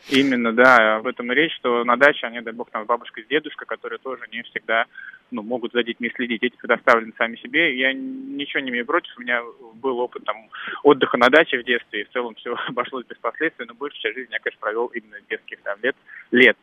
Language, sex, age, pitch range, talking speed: Russian, male, 20-39, 105-125 Hz, 225 wpm